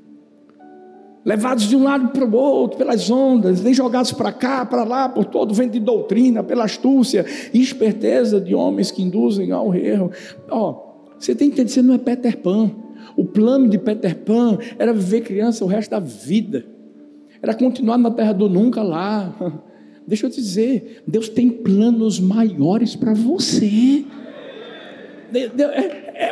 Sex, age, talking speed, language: male, 60-79, 165 wpm, Portuguese